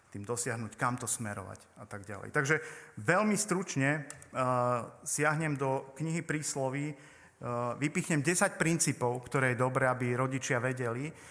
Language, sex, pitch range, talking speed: Slovak, male, 120-145 Hz, 140 wpm